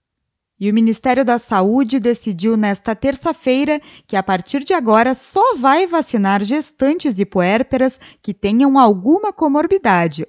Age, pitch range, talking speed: 20-39, 205-295 Hz, 135 wpm